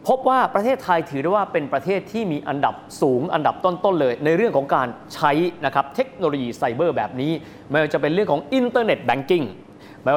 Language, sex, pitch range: Thai, male, 140-200 Hz